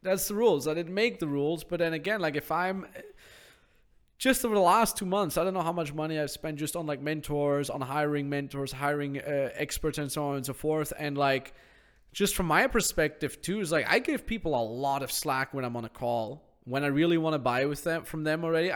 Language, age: English, 20-39